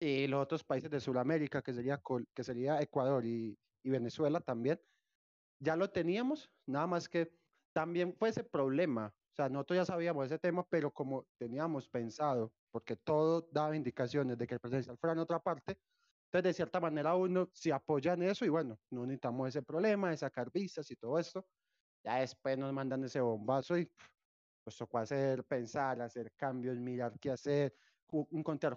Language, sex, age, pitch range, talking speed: Spanish, male, 30-49, 125-160 Hz, 185 wpm